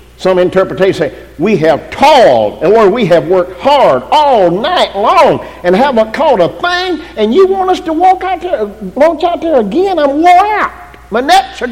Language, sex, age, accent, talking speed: English, male, 50-69, American, 190 wpm